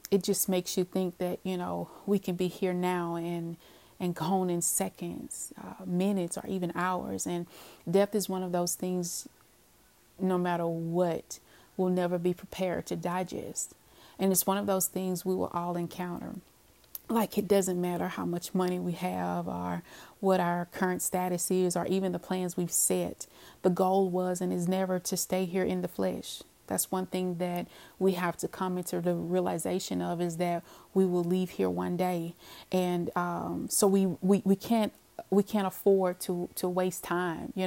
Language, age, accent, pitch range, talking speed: English, 30-49, American, 175-185 Hz, 185 wpm